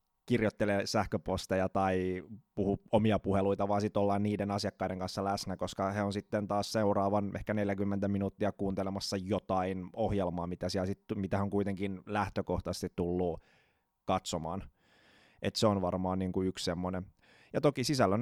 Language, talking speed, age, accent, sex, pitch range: Finnish, 135 wpm, 20-39, native, male, 90-105 Hz